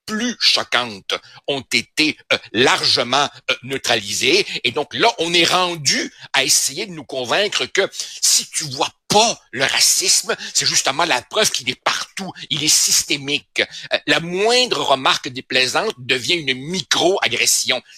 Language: French